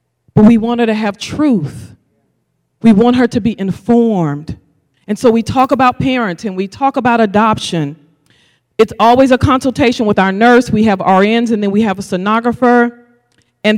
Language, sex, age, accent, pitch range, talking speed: English, female, 40-59, American, 190-245 Hz, 175 wpm